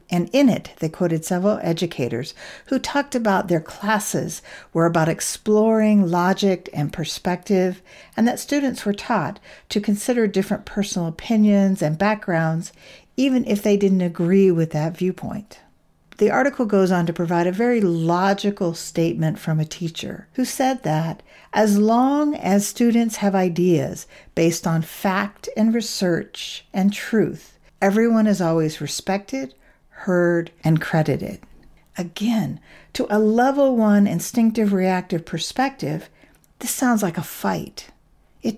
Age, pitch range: 50-69, 165-215 Hz